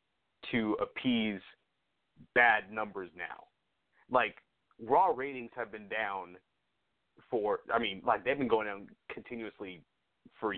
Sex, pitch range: male, 115-170 Hz